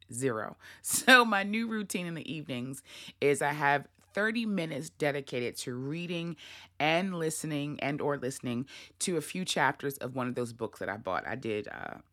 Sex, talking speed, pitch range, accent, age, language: female, 175 wpm, 130-190 Hz, American, 20-39, English